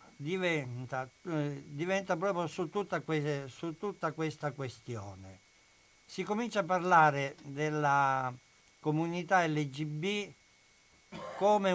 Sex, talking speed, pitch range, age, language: male, 95 wpm, 135-175 Hz, 60-79, Italian